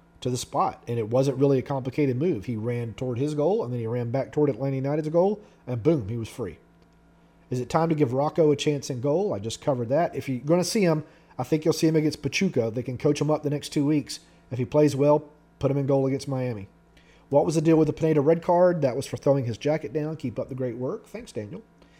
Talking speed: 265 wpm